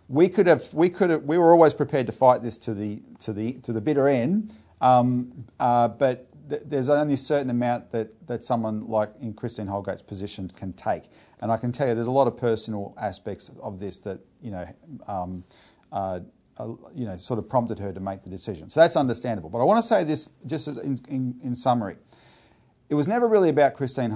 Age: 40-59